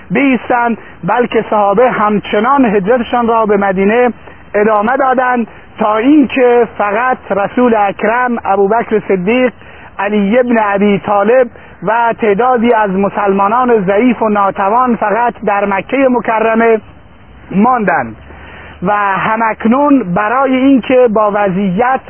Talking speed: 105 wpm